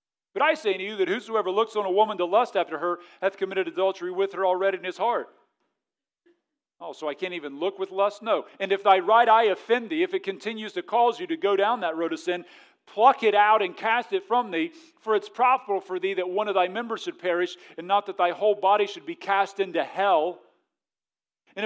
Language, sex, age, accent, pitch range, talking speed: English, male, 40-59, American, 195-295 Hz, 235 wpm